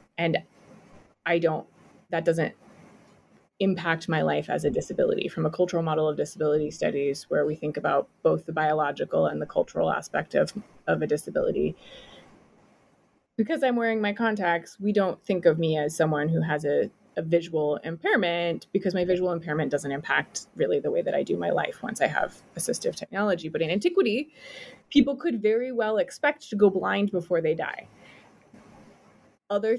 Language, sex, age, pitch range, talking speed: English, female, 20-39, 160-205 Hz, 170 wpm